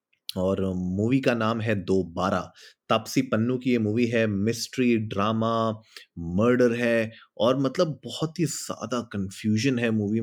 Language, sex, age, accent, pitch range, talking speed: Hindi, male, 30-49, native, 105-130 Hz, 140 wpm